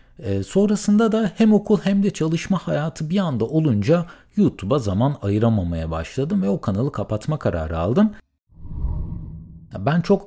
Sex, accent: male, native